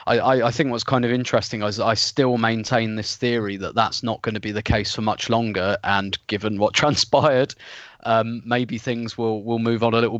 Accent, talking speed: British, 220 wpm